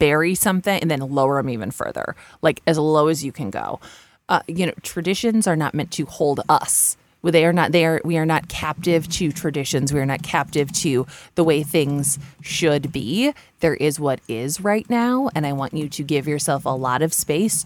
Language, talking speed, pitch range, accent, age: English, 210 wpm, 150-195 Hz, American, 20-39